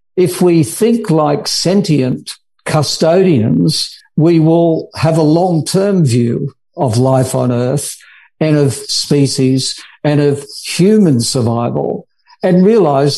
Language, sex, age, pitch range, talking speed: English, male, 60-79, 140-175 Hz, 115 wpm